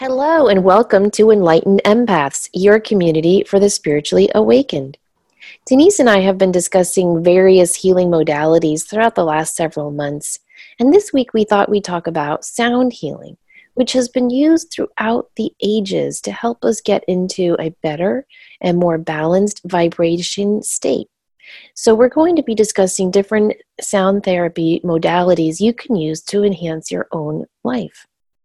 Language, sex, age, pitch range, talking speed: English, female, 30-49, 160-215 Hz, 155 wpm